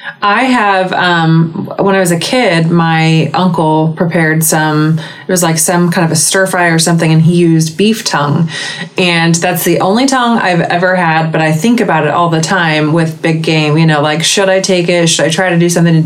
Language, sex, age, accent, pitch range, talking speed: English, female, 20-39, American, 155-180 Hz, 220 wpm